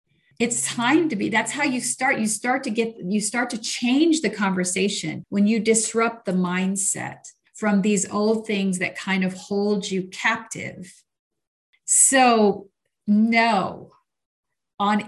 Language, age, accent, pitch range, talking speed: English, 50-69, American, 180-220 Hz, 145 wpm